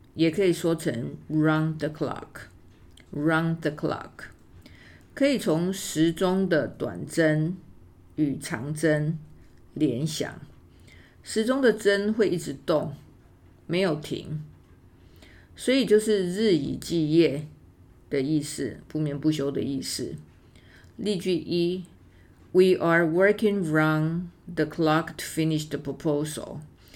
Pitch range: 140-170 Hz